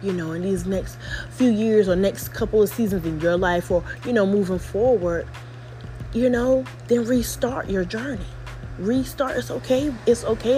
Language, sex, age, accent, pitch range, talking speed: English, female, 20-39, American, 160-200 Hz, 175 wpm